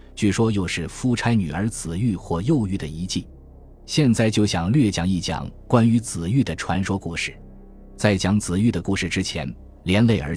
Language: Chinese